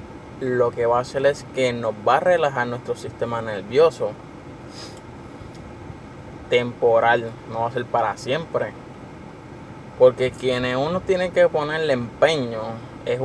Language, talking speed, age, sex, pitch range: Spanish, 130 wpm, 20-39, male, 125-175 Hz